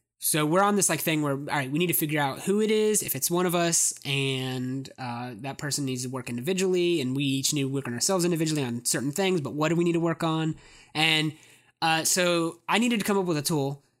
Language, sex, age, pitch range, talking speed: English, male, 20-39, 140-170 Hz, 260 wpm